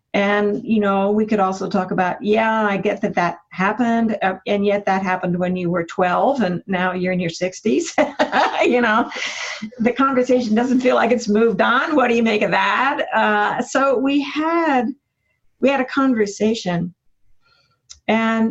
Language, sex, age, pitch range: English, female, 50-69, 190-255 Hz